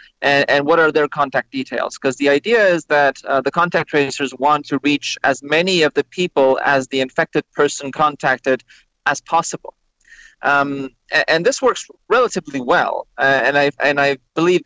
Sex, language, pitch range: male, English, 130-150 Hz